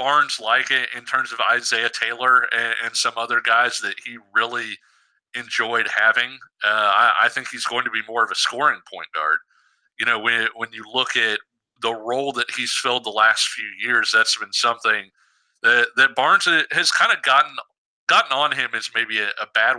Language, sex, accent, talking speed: English, male, American, 200 wpm